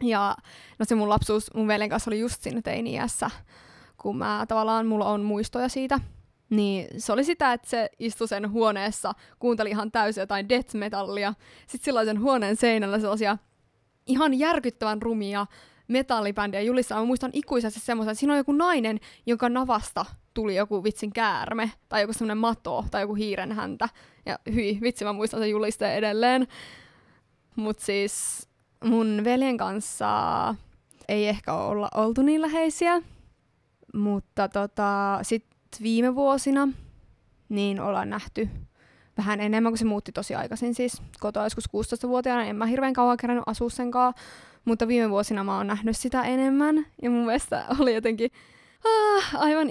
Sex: female